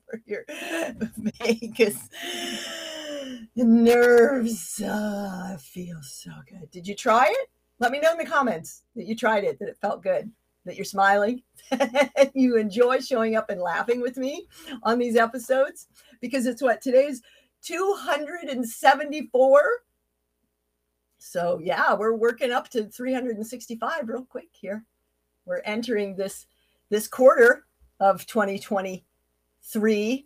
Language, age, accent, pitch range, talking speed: English, 40-59, American, 200-270 Hz, 125 wpm